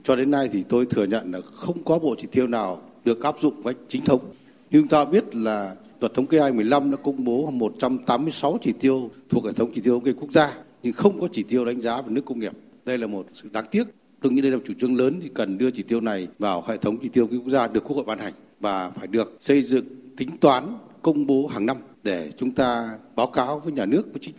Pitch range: 115-140 Hz